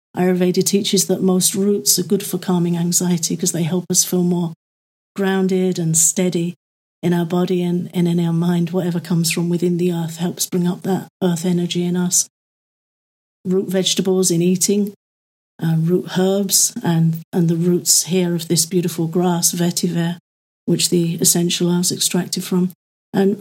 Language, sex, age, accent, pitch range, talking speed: English, female, 50-69, British, 180-195 Hz, 165 wpm